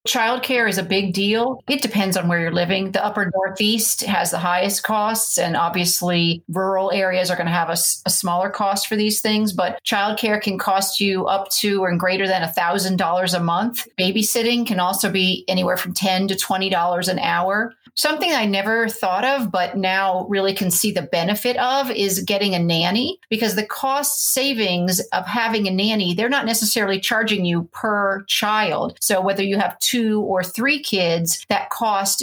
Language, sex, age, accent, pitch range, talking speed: English, female, 40-59, American, 180-215 Hz, 190 wpm